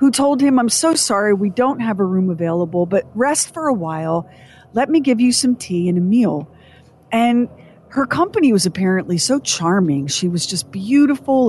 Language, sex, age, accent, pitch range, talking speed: English, female, 40-59, American, 185-265 Hz, 195 wpm